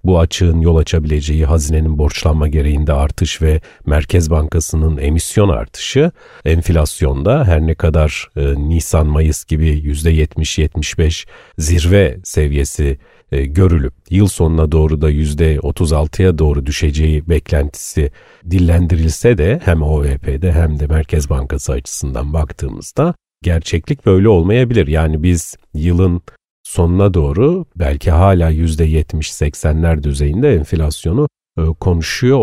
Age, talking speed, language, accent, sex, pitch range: 40-59, 105 wpm, Turkish, native, male, 75-95 Hz